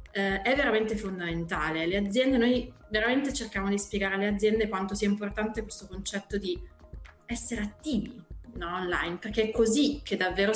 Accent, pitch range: native, 190-235 Hz